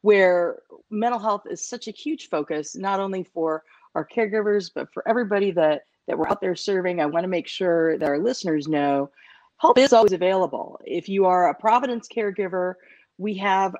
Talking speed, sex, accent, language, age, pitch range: 185 wpm, female, American, English, 40-59, 175-220 Hz